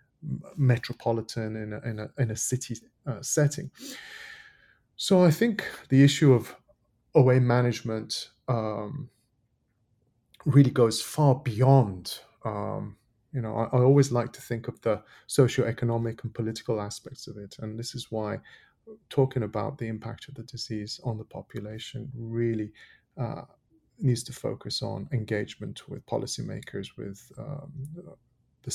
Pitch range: 110-135 Hz